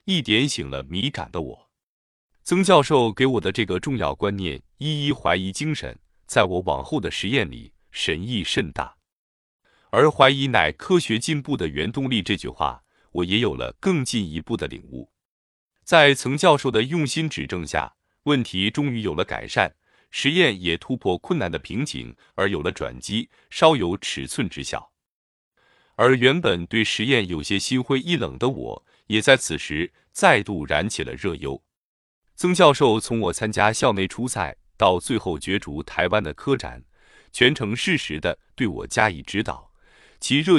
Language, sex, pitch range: Chinese, male, 90-140 Hz